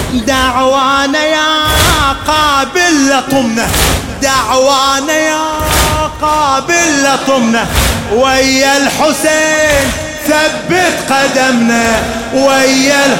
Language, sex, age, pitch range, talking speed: English, male, 30-49, 210-305 Hz, 60 wpm